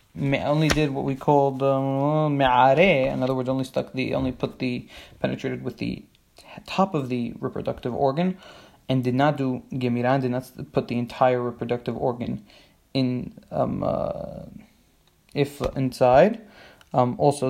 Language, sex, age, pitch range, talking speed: English, male, 20-39, 125-145 Hz, 145 wpm